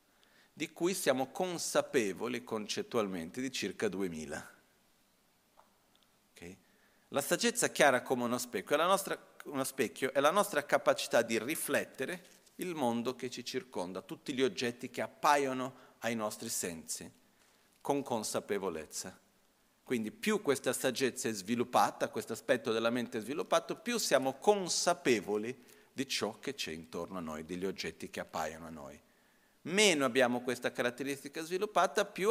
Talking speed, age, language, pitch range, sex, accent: 140 wpm, 40-59, Italian, 120-155 Hz, male, native